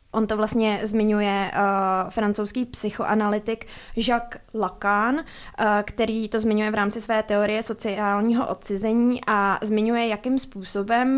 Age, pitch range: 20-39, 200-225 Hz